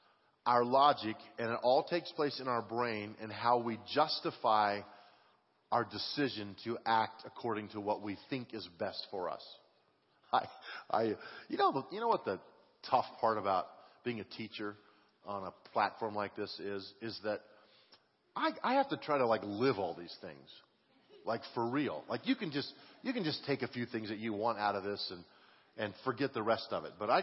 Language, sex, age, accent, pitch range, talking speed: English, male, 40-59, American, 110-145 Hz, 195 wpm